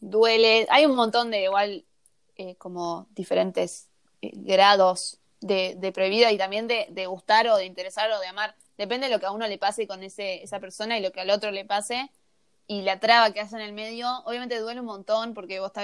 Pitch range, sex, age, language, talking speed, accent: 195-235 Hz, female, 20-39, Spanish, 225 wpm, Argentinian